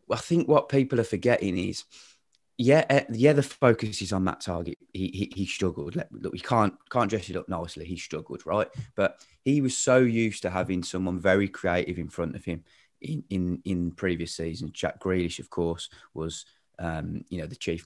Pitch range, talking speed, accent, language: 95-120 Hz, 200 wpm, British, English